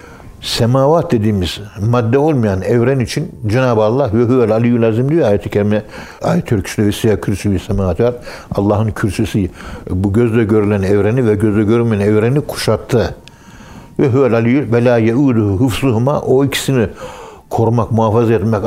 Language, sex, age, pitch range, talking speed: Turkish, male, 60-79, 105-135 Hz, 130 wpm